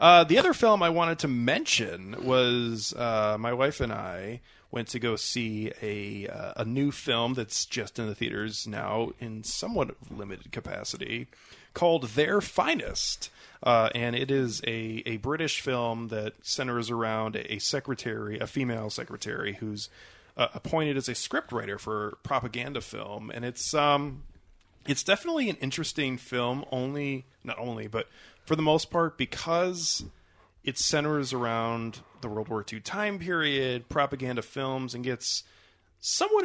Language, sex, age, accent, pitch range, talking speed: English, male, 30-49, American, 110-135 Hz, 155 wpm